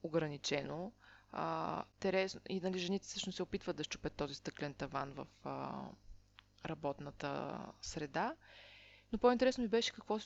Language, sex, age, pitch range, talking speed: Bulgarian, female, 20-39, 165-210 Hz, 135 wpm